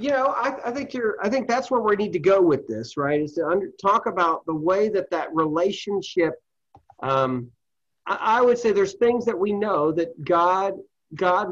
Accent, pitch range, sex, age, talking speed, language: American, 145-190 Hz, male, 40-59, 210 wpm, English